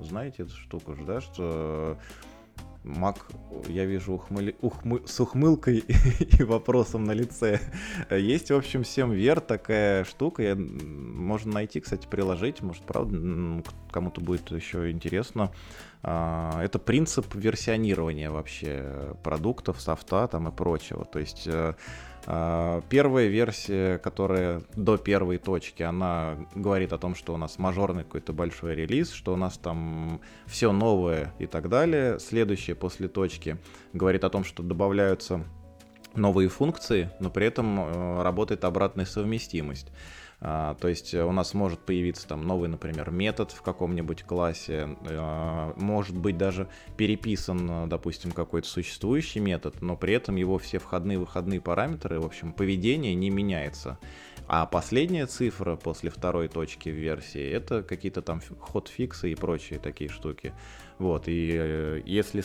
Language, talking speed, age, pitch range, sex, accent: Russian, 135 wpm, 20-39, 80-100 Hz, male, native